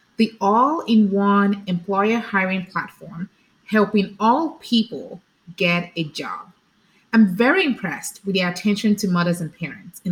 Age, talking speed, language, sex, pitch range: 30-49, 130 wpm, English, female, 180-230 Hz